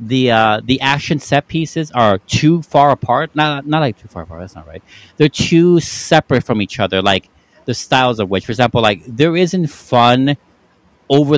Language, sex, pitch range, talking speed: English, male, 105-140 Hz, 195 wpm